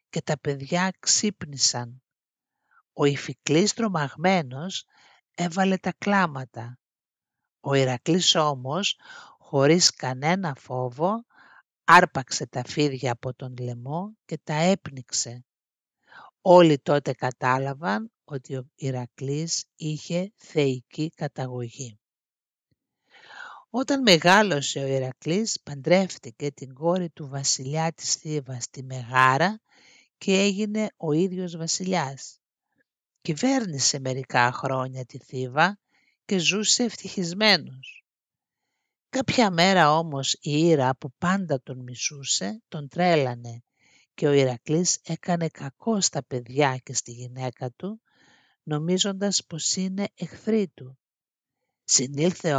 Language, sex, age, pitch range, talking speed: Greek, male, 60-79, 130-180 Hz, 100 wpm